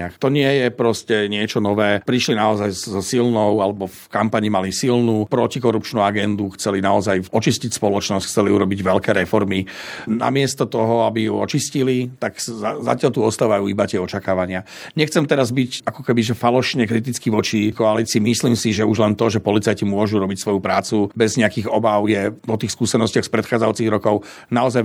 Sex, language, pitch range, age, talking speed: male, Slovak, 100-115 Hz, 50-69, 170 wpm